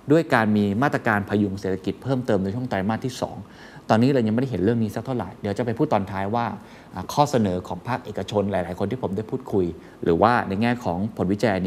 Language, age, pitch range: Thai, 20-39, 105-140 Hz